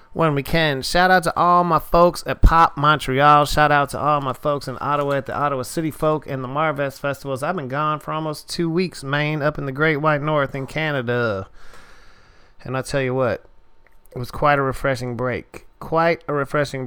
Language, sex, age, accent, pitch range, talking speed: English, male, 30-49, American, 125-155 Hz, 210 wpm